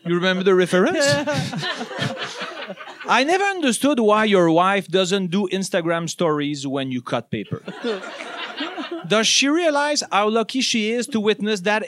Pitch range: 195-260 Hz